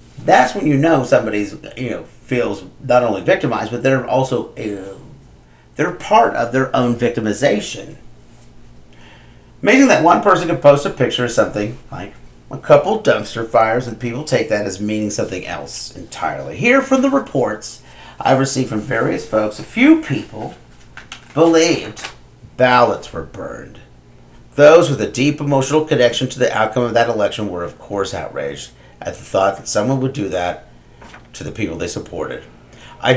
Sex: male